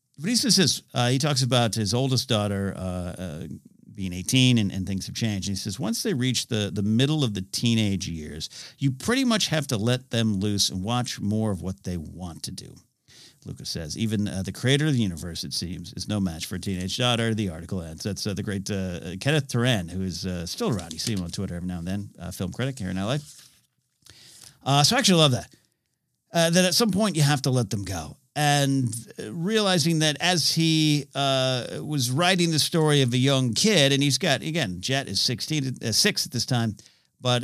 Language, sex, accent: English, male, American